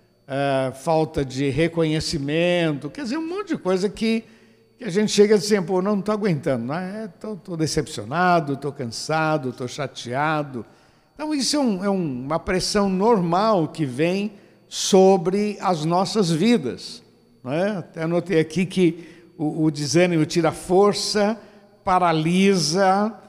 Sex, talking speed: male, 150 wpm